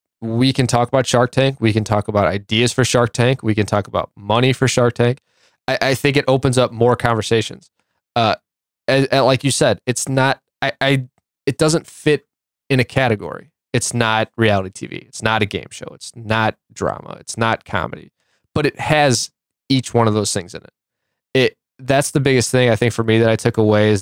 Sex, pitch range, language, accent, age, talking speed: male, 110-135 Hz, English, American, 20-39, 210 wpm